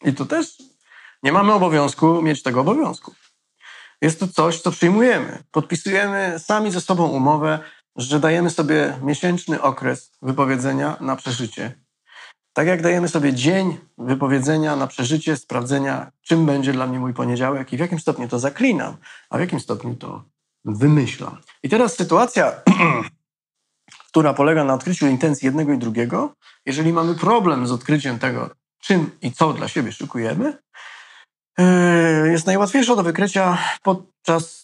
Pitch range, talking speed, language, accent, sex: 135-180 Hz, 140 wpm, Polish, native, male